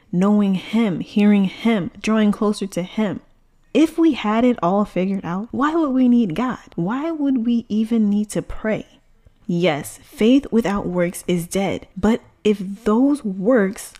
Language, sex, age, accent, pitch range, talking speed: English, female, 10-29, American, 180-215 Hz, 160 wpm